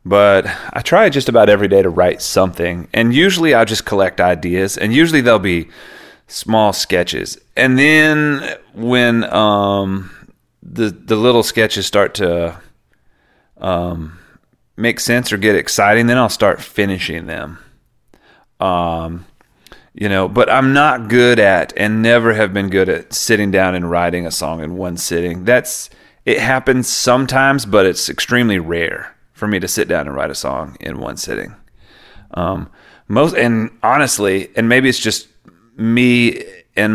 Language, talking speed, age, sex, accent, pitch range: English, 155 wpm, 30-49, male, American, 90-115 Hz